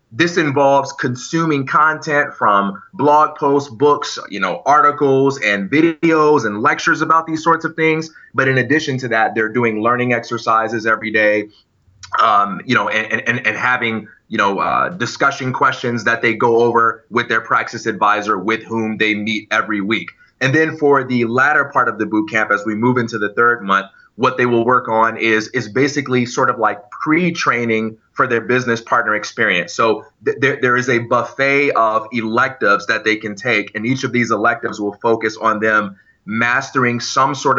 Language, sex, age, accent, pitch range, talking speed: English, male, 30-49, American, 110-130 Hz, 185 wpm